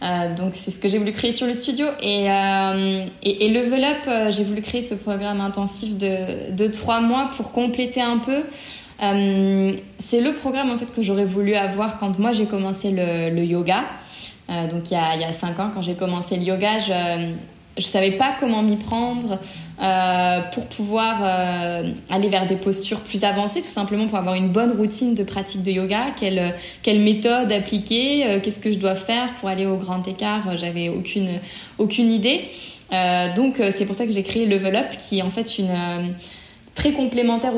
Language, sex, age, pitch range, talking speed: French, female, 20-39, 190-230 Hz, 200 wpm